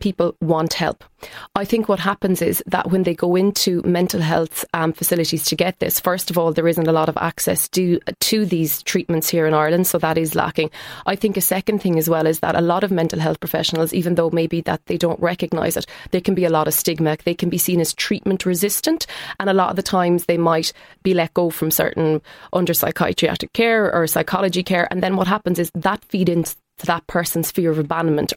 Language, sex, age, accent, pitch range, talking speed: English, female, 20-39, Irish, 165-185 Hz, 230 wpm